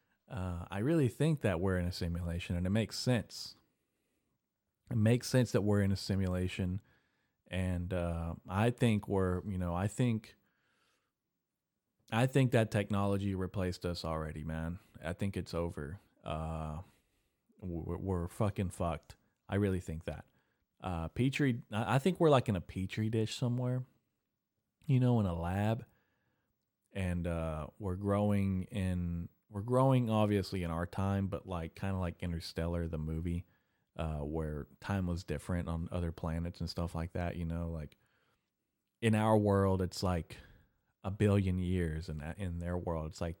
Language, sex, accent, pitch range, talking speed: English, male, American, 85-105 Hz, 160 wpm